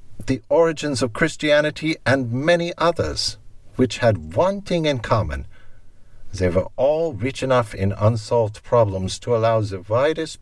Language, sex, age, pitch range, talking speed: English, male, 60-79, 100-130 Hz, 140 wpm